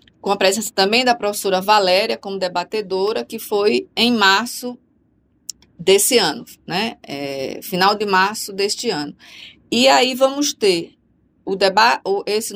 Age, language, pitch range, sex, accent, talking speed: 20-39, Portuguese, 190-235 Hz, female, Brazilian, 125 wpm